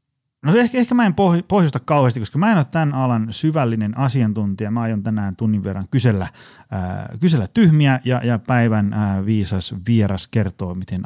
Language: Finnish